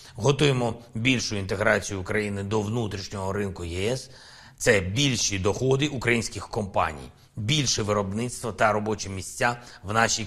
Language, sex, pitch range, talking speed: Ukrainian, male, 105-135 Hz, 115 wpm